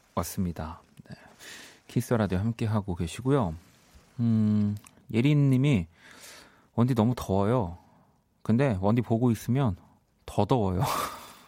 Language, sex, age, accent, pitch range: Korean, male, 30-49, native, 95-125 Hz